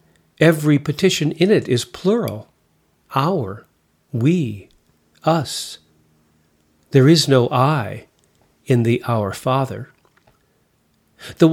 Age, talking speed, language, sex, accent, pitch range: 50-69, 95 wpm, English, male, American, 110-155 Hz